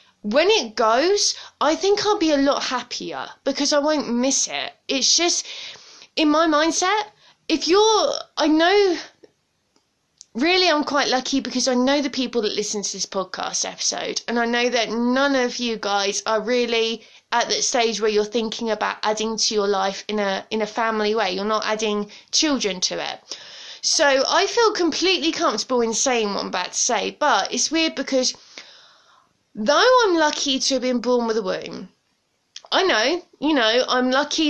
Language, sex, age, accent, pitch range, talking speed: English, female, 20-39, British, 225-310 Hz, 180 wpm